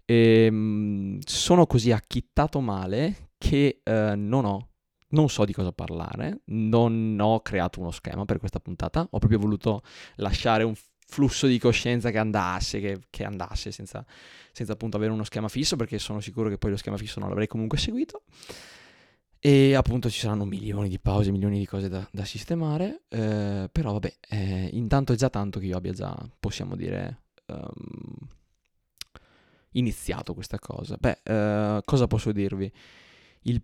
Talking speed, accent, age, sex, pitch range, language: 160 wpm, native, 20-39, male, 100-130 Hz, Italian